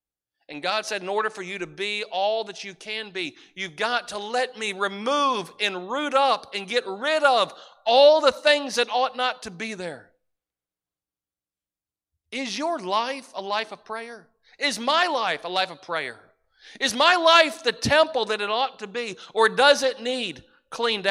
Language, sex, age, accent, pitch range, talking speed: English, male, 40-59, American, 195-245 Hz, 185 wpm